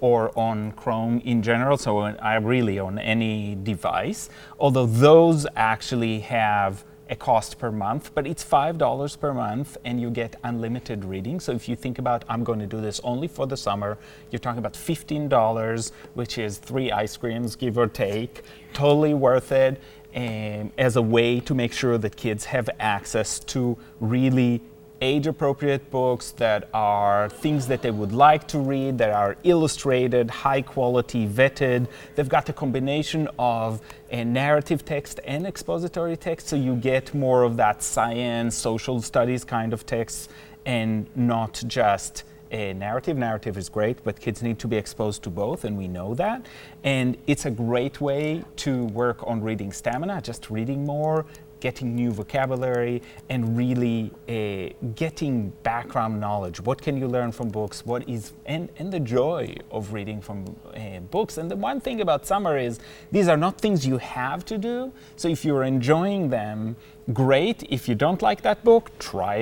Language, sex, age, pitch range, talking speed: English, male, 30-49, 110-145 Hz, 170 wpm